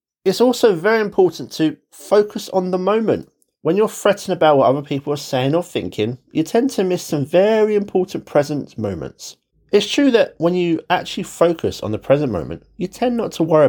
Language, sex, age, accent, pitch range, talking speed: English, male, 30-49, British, 130-200 Hz, 195 wpm